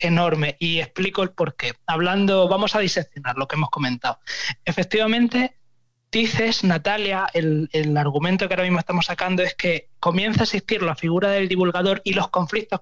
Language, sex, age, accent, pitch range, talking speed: Spanish, male, 20-39, Spanish, 155-190 Hz, 175 wpm